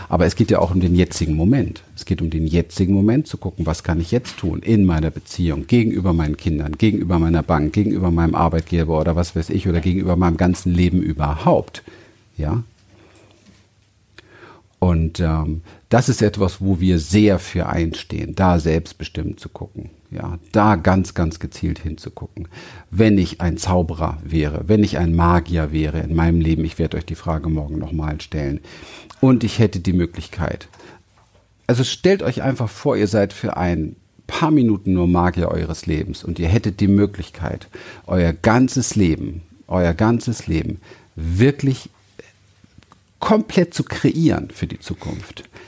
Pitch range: 85-105 Hz